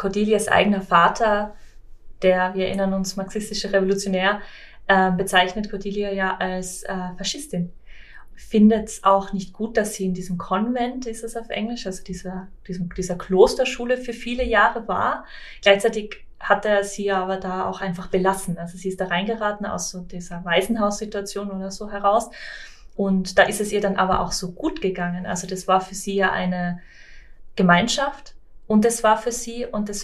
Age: 20-39